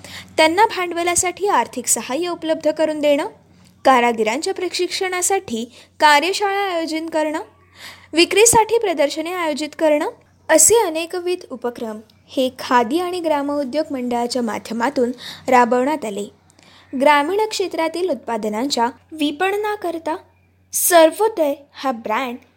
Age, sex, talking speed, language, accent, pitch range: 20-39, female, 95 wpm, Marathi, native, 240-340 Hz